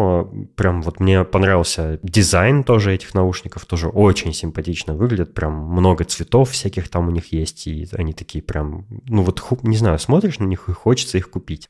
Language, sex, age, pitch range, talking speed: Russian, male, 20-39, 85-110 Hz, 180 wpm